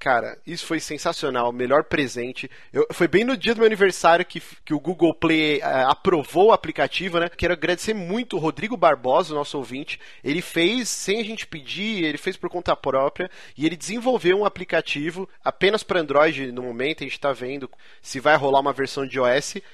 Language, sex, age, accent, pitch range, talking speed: Portuguese, male, 30-49, Brazilian, 140-190 Hz, 195 wpm